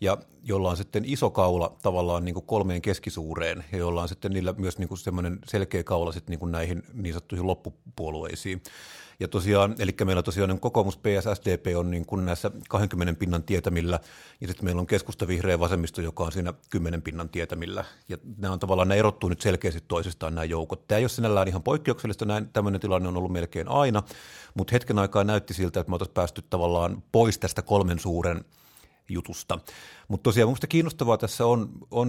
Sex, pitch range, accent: male, 90-105 Hz, native